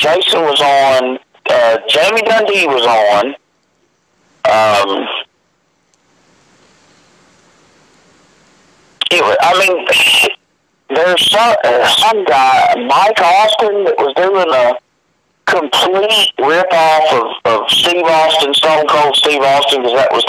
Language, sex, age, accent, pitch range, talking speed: English, male, 50-69, American, 130-180 Hz, 100 wpm